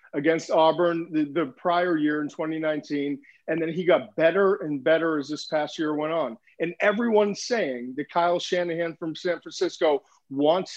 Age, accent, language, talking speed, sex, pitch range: 40-59, American, English, 175 wpm, male, 155-185 Hz